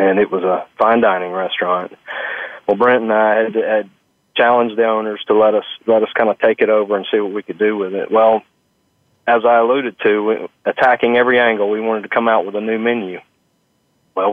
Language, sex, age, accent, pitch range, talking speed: English, male, 40-59, American, 100-120 Hz, 220 wpm